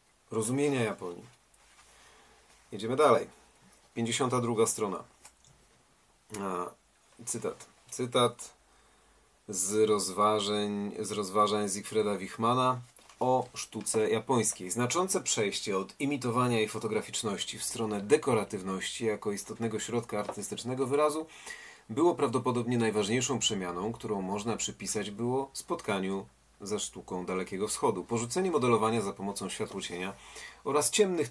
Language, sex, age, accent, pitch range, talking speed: Polish, male, 40-59, native, 105-125 Hz, 100 wpm